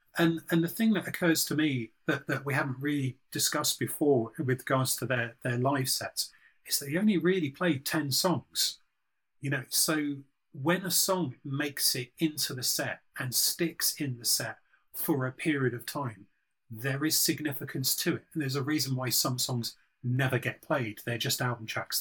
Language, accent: English, British